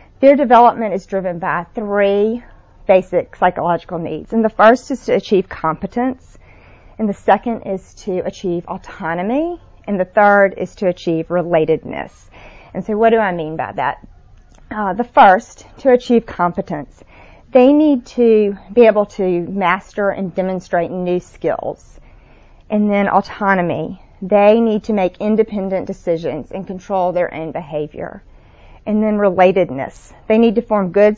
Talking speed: 150 wpm